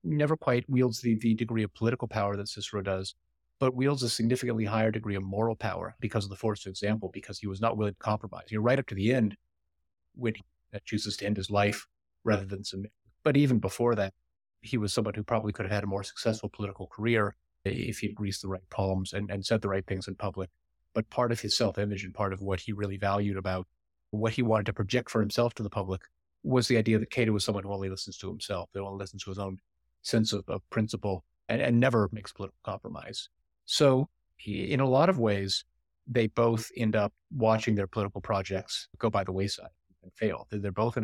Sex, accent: male, American